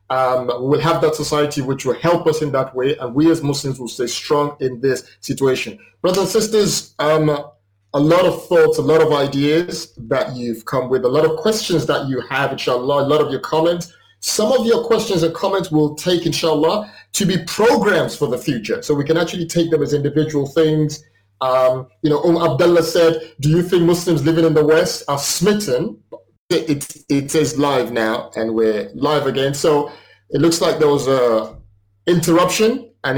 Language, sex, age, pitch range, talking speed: English, male, 30-49, 125-165 Hz, 195 wpm